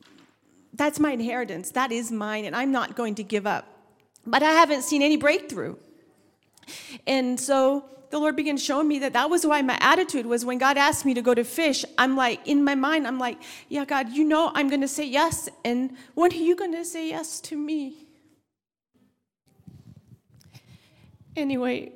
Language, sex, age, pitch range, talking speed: English, female, 40-59, 260-315 Hz, 185 wpm